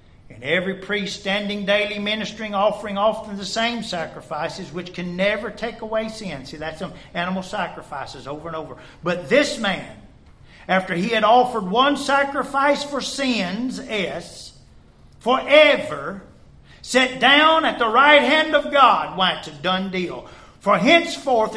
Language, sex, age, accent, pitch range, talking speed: English, male, 50-69, American, 195-275 Hz, 145 wpm